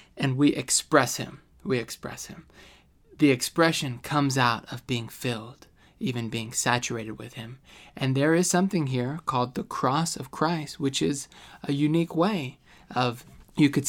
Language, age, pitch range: English, 20-39, 125-150 Hz